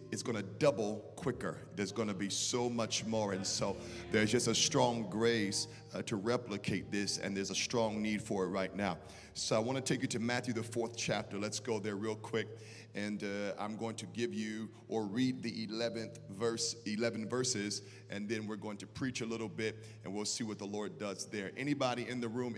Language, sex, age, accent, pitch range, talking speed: English, male, 40-59, American, 105-130 Hz, 220 wpm